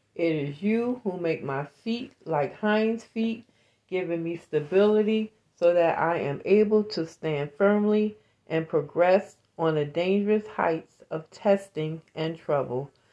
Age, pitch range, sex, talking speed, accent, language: 40-59, 150-205 Hz, female, 140 wpm, American, English